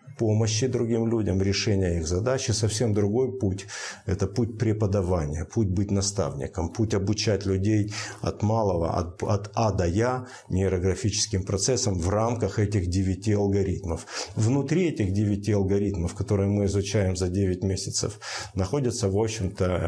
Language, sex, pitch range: Russian, male, 95-115 Hz